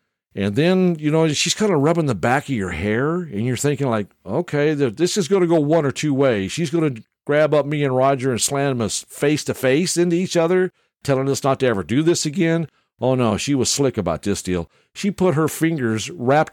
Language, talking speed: English, 230 wpm